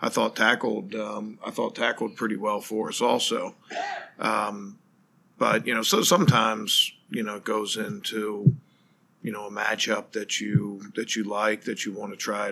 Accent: American